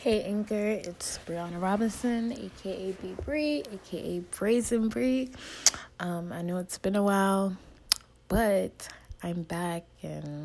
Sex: female